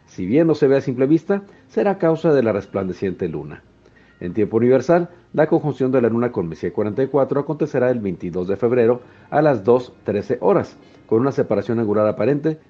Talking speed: 185 wpm